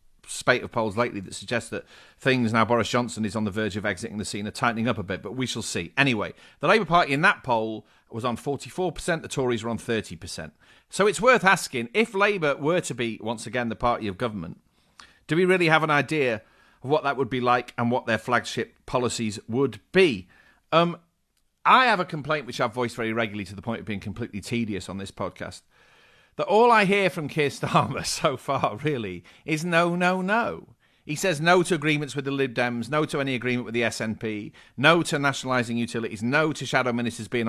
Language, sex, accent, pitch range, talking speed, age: English, male, British, 115-165 Hz, 220 wpm, 40-59